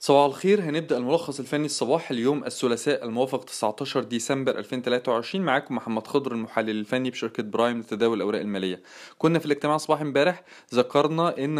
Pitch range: 130-155 Hz